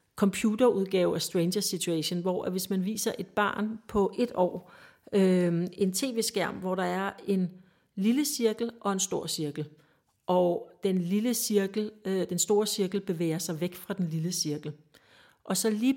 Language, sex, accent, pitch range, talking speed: Danish, female, native, 180-220 Hz, 170 wpm